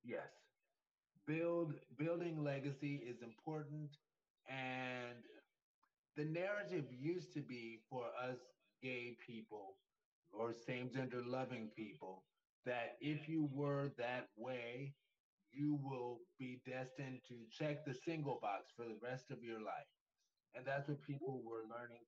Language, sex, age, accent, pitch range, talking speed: English, male, 30-49, American, 120-155 Hz, 130 wpm